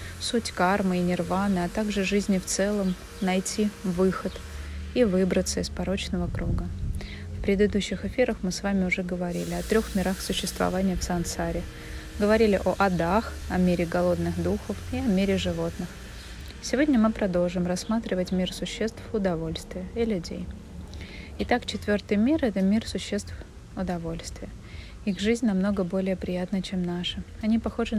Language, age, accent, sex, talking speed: Russian, 30-49, native, female, 140 wpm